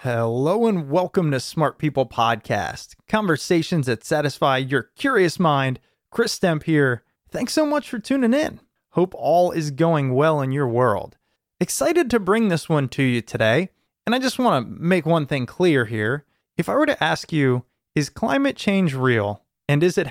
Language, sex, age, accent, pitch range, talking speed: English, male, 30-49, American, 130-190 Hz, 180 wpm